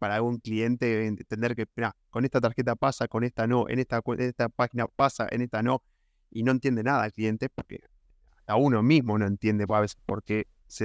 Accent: Argentinian